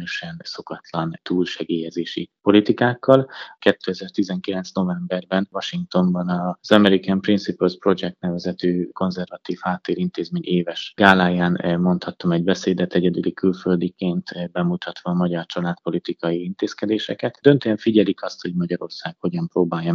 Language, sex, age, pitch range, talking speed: Hungarian, male, 30-49, 85-95 Hz, 95 wpm